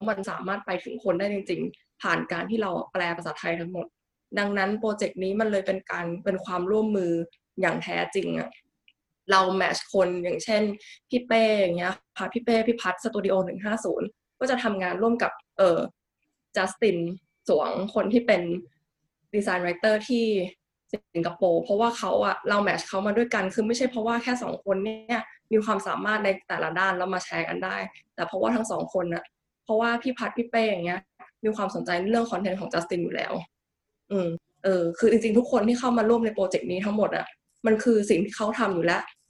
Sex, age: female, 20-39